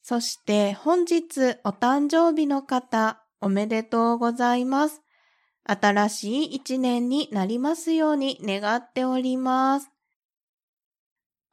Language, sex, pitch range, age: Japanese, female, 205-275 Hz, 20-39